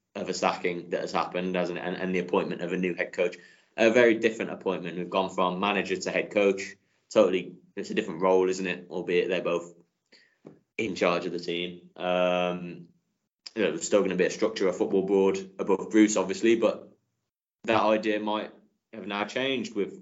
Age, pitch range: 20-39, 90-100 Hz